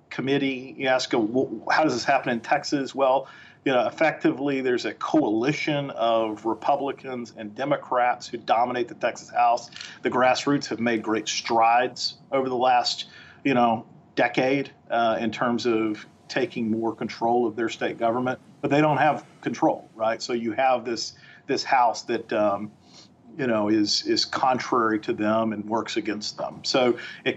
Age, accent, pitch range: 40-59, American, 115-145 Hz